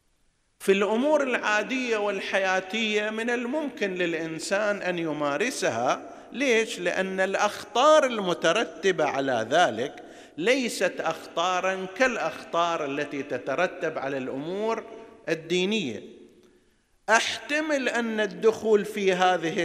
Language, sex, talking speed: Arabic, male, 85 wpm